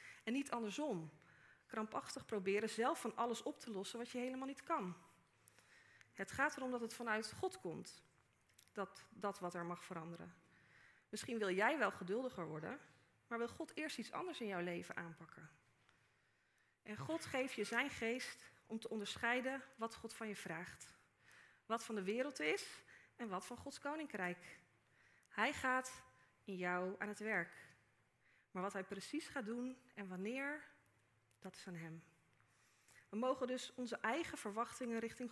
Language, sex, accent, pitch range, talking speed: Dutch, female, Dutch, 185-265 Hz, 165 wpm